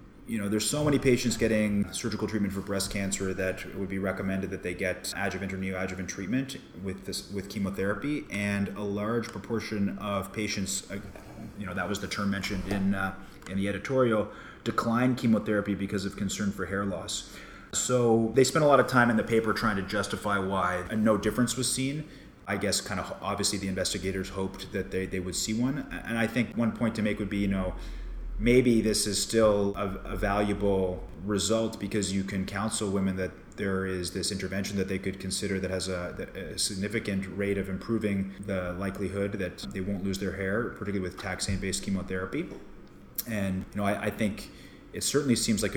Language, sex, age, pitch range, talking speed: English, male, 30-49, 95-105 Hz, 195 wpm